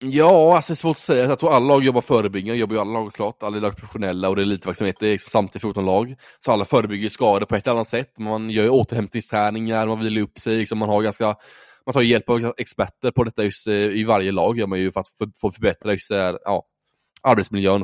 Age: 20-39